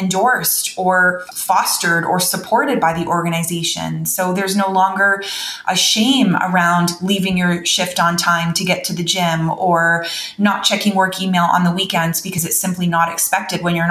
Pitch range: 175-205 Hz